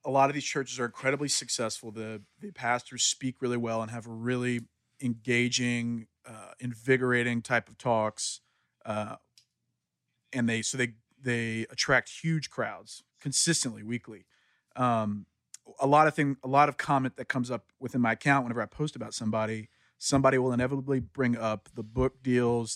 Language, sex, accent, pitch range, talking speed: English, male, American, 115-135 Hz, 165 wpm